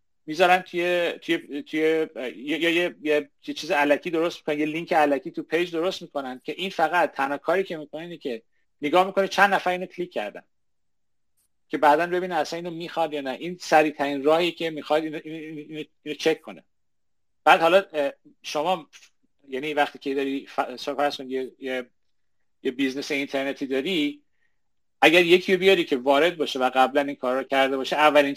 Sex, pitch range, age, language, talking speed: male, 135-170 Hz, 40-59, Persian, 175 wpm